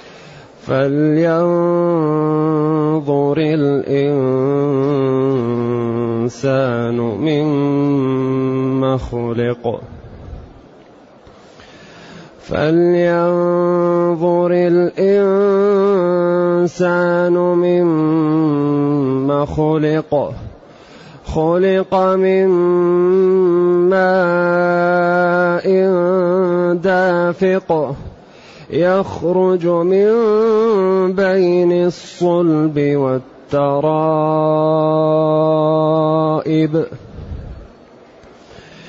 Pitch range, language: 145-175 Hz, Arabic